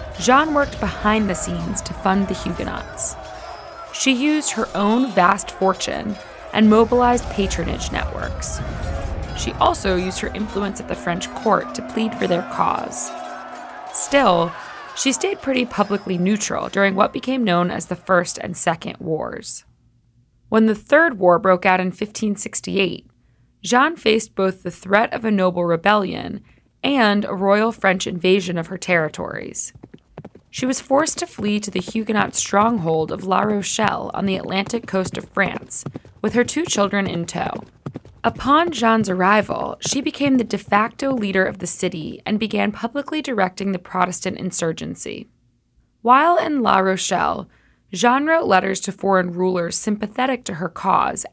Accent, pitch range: American, 185-235 Hz